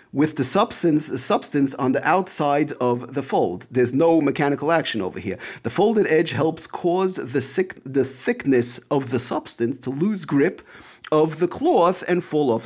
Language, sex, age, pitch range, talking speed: English, male, 40-59, 120-155 Hz, 175 wpm